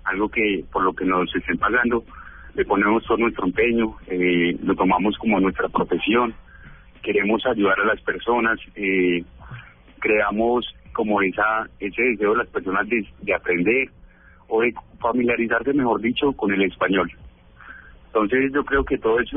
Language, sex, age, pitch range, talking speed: Spanish, male, 30-49, 95-120 Hz, 155 wpm